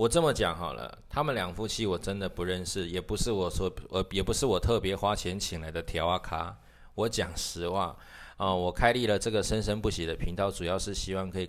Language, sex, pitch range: Chinese, male, 85-105 Hz